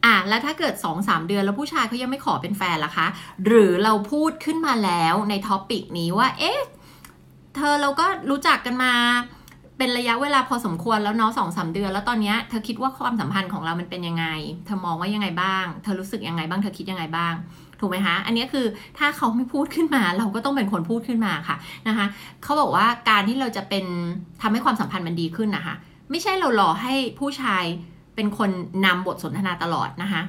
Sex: female